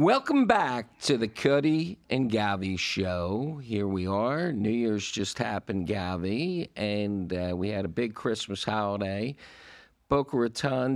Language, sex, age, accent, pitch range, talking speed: English, male, 50-69, American, 115-150 Hz, 140 wpm